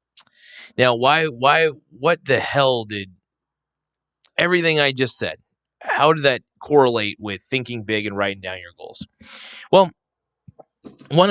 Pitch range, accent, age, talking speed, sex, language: 110-150 Hz, American, 20-39, 135 wpm, male, English